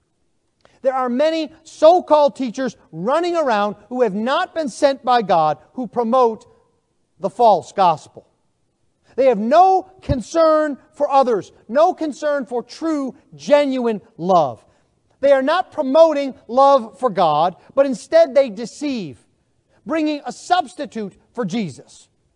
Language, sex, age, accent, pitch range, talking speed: English, male, 40-59, American, 190-285 Hz, 125 wpm